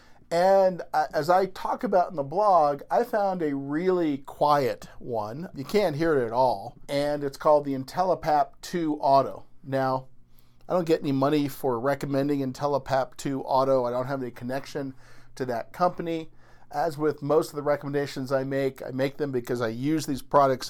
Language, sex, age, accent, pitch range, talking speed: English, male, 50-69, American, 130-160 Hz, 180 wpm